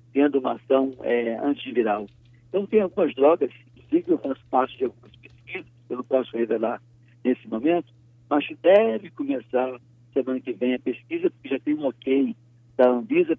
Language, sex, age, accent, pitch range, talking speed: Portuguese, male, 60-79, Brazilian, 120-145 Hz, 165 wpm